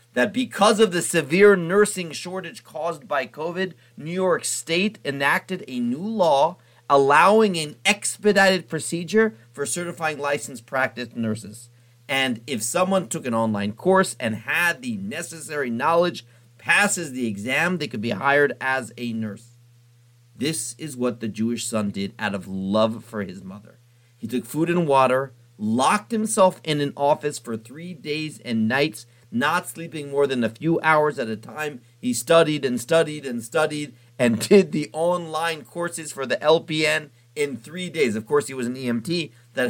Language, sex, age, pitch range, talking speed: English, male, 40-59, 120-170 Hz, 165 wpm